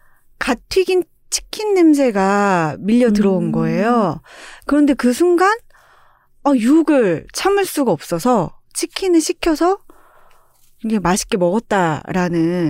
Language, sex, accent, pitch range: Korean, female, native, 180-295 Hz